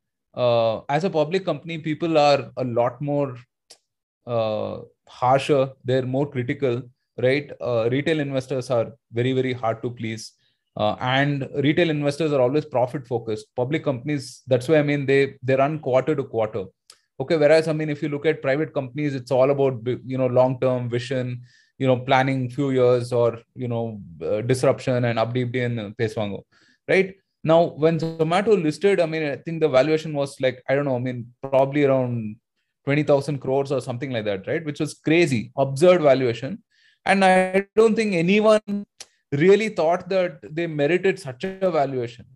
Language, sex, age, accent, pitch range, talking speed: Tamil, male, 20-39, native, 125-160 Hz, 175 wpm